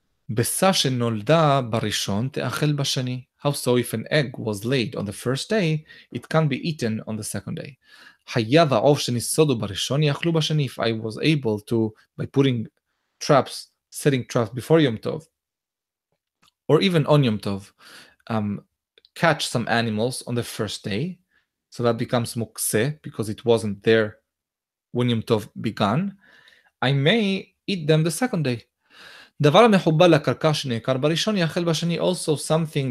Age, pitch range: 20-39, 115-155 Hz